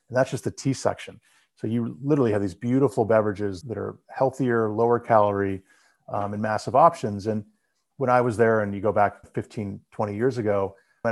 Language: English